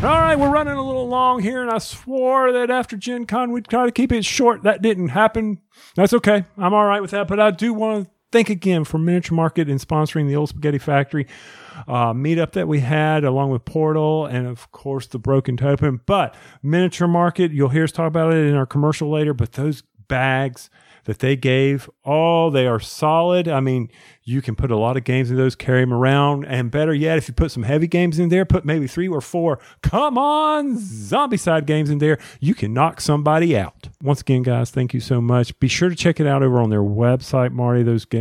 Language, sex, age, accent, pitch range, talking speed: English, male, 40-59, American, 130-180 Hz, 230 wpm